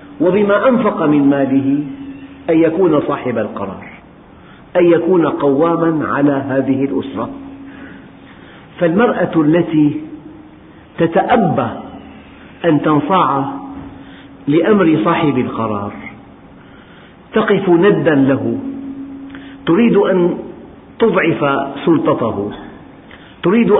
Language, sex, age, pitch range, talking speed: Arabic, male, 50-69, 140-190 Hz, 75 wpm